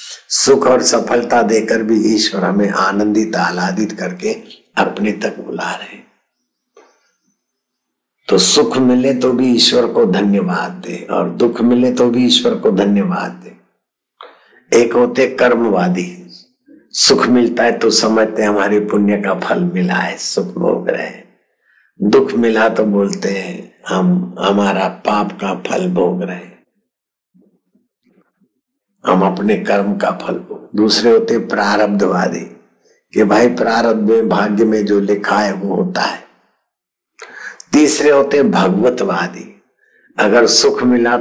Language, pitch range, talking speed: Hindi, 105-135 Hz, 125 wpm